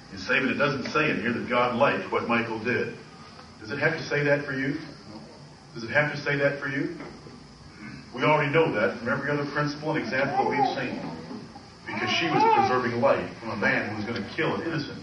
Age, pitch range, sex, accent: 40-59, 140-165 Hz, male, American